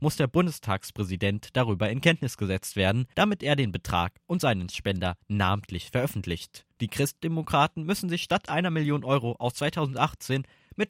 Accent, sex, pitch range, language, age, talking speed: German, male, 105-155 Hz, German, 20-39, 155 wpm